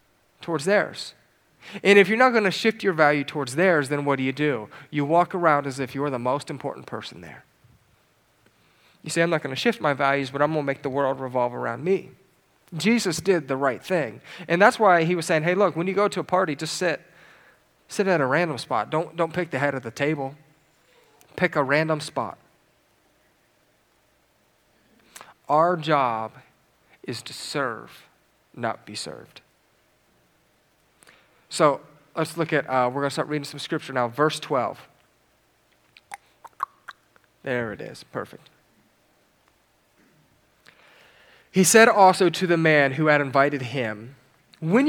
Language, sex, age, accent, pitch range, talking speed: English, male, 40-59, American, 140-180 Hz, 165 wpm